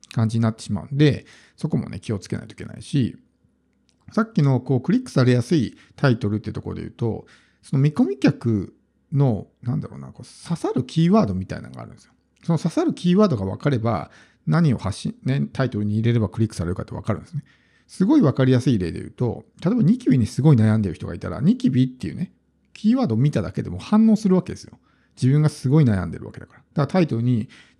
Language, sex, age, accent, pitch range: Japanese, male, 50-69, native, 105-145 Hz